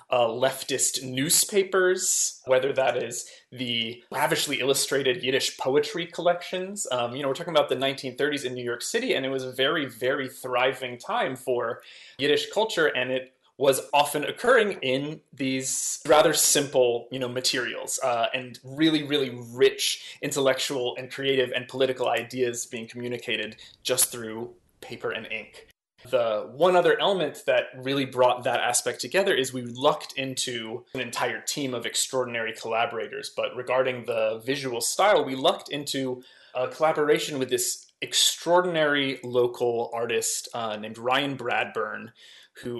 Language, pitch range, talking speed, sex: English, 125-150 Hz, 145 wpm, male